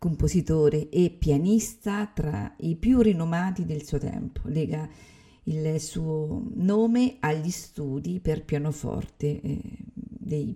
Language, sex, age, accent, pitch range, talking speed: Italian, female, 50-69, native, 145-185 Hz, 115 wpm